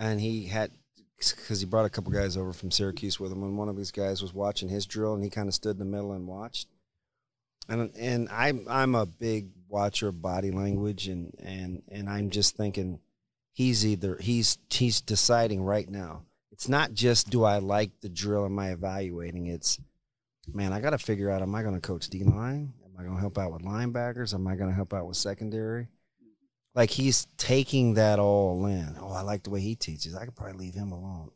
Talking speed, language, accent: 220 wpm, English, American